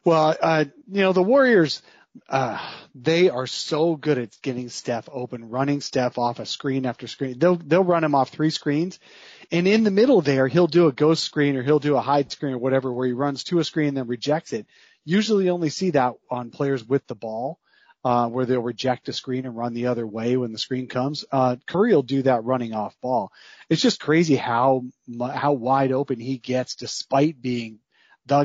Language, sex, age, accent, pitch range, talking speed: English, male, 30-49, American, 125-145 Hz, 220 wpm